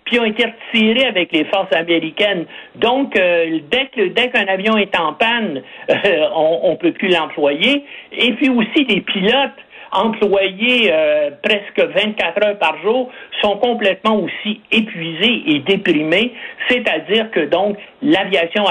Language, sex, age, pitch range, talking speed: French, male, 60-79, 170-240 Hz, 150 wpm